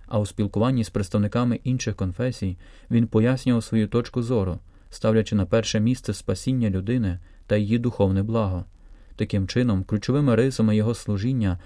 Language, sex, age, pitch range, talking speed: Ukrainian, male, 30-49, 100-125 Hz, 145 wpm